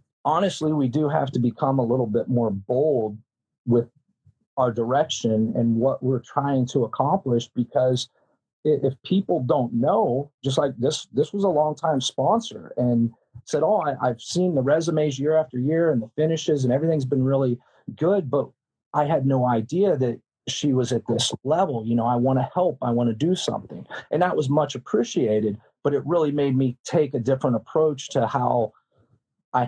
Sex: male